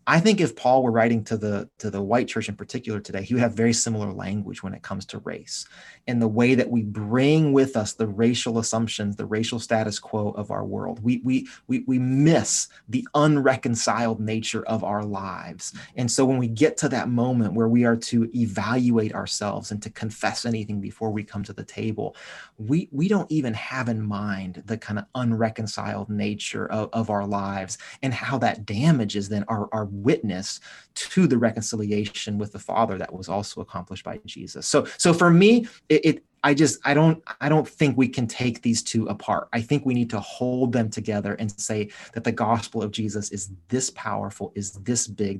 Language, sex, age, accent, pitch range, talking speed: English, male, 30-49, American, 105-125 Hz, 205 wpm